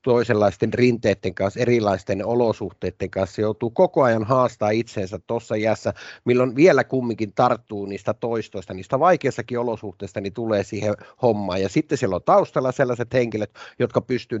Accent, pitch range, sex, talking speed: native, 105-135 Hz, male, 150 wpm